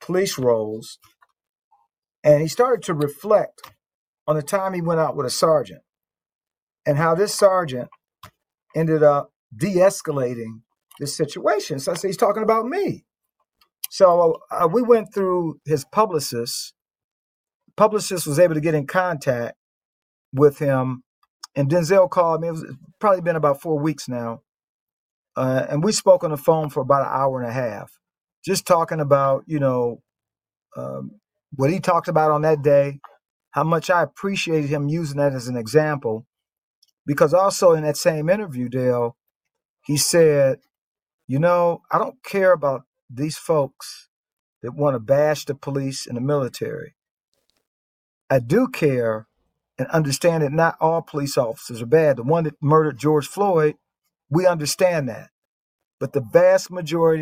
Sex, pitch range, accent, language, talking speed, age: male, 135-175 Hz, American, English, 155 wpm, 40-59